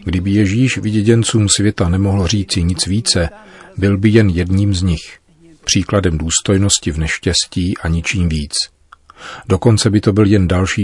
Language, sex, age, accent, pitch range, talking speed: Czech, male, 40-59, native, 80-100 Hz, 150 wpm